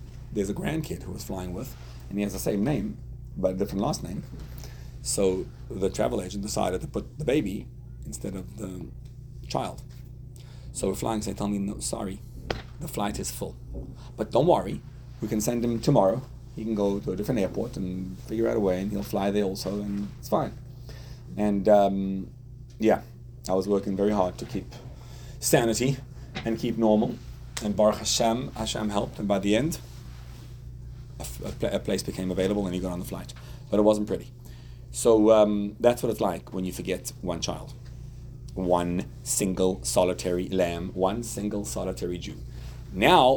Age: 30-49